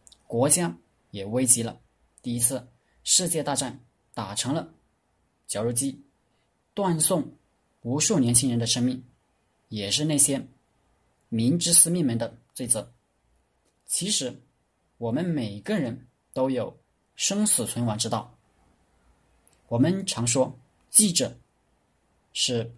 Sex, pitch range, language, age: male, 110-140 Hz, Chinese, 20-39